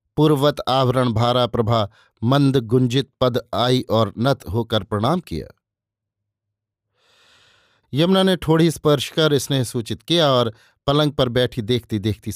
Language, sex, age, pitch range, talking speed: Hindi, male, 50-69, 110-140 Hz, 130 wpm